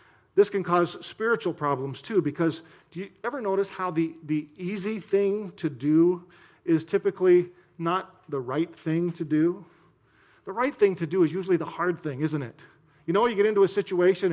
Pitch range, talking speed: 160-200 Hz, 190 wpm